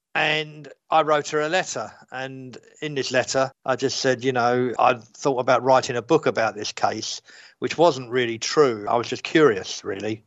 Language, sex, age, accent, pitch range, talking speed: English, male, 50-69, British, 120-145 Hz, 195 wpm